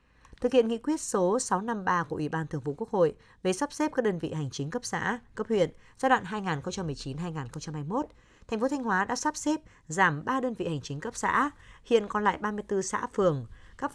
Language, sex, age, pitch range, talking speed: Vietnamese, female, 20-39, 165-235 Hz, 215 wpm